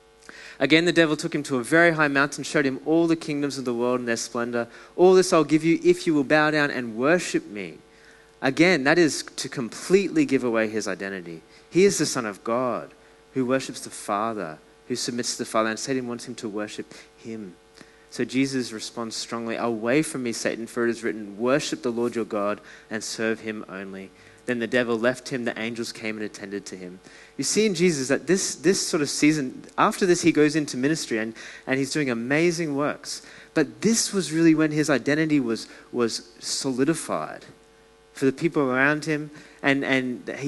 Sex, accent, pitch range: male, Australian, 115-150 Hz